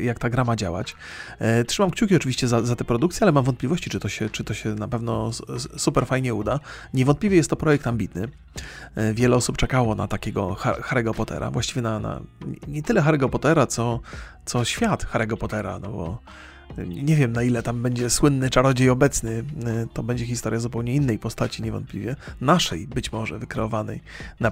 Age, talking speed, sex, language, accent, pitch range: 30-49, 180 wpm, male, Polish, native, 110-130 Hz